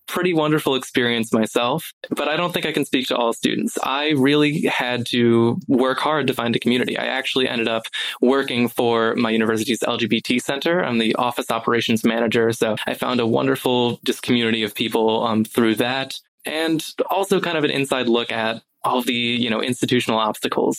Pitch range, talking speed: 115-130 Hz, 185 wpm